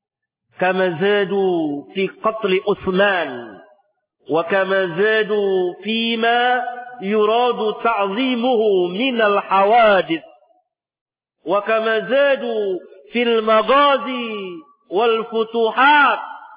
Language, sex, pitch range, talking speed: Indonesian, male, 190-270 Hz, 60 wpm